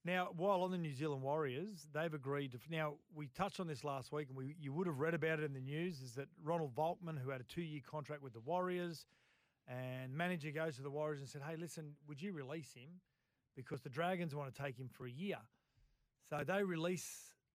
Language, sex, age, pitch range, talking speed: English, male, 40-59, 135-160 Hz, 225 wpm